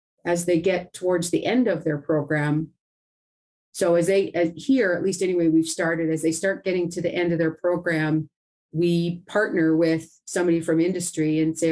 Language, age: English, 40-59